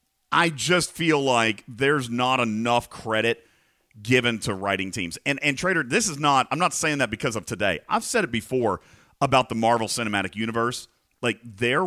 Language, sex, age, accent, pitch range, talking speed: English, male, 40-59, American, 110-140 Hz, 185 wpm